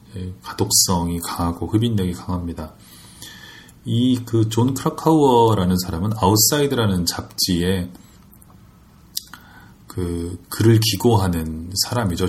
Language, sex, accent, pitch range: Korean, male, native, 90-115 Hz